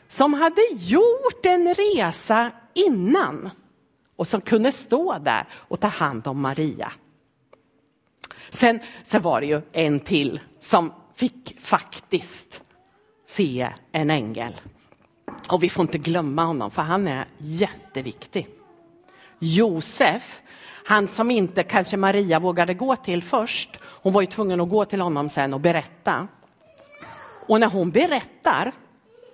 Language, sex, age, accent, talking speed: Swedish, female, 50-69, native, 130 wpm